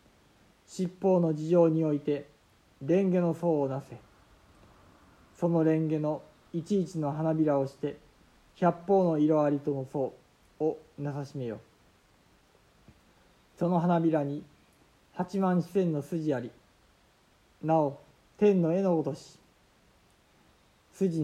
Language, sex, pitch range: Japanese, male, 145-170 Hz